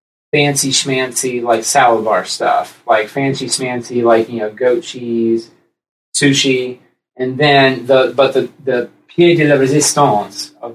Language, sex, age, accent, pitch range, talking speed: English, male, 30-49, American, 115-140 Hz, 140 wpm